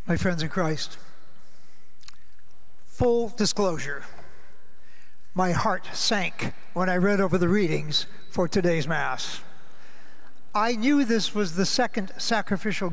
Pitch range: 190-235 Hz